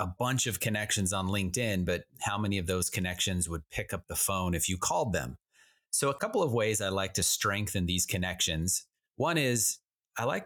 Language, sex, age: English, male, 30-49